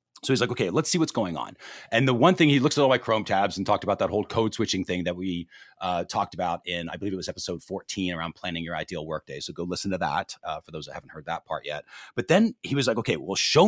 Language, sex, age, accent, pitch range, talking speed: English, male, 40-59, American, 95-135 Hz, 295 wpm